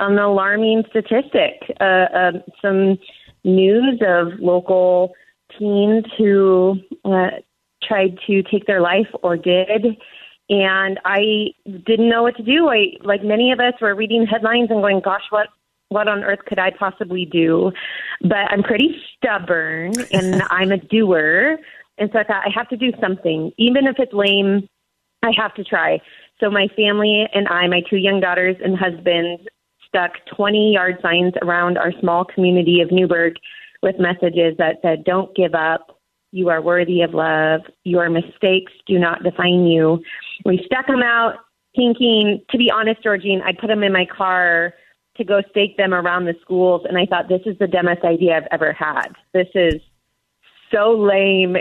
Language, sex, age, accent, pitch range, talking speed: English, female, 30-49, American, 180-215 Hz, 170 wpm